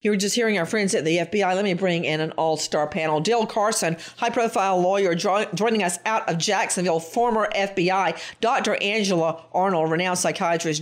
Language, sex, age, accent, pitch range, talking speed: English, female, 50-69, American, 175-235 Hz, 185 wpm